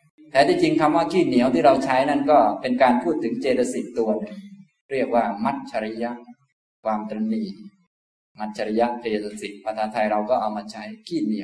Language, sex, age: Thai, male, 20-39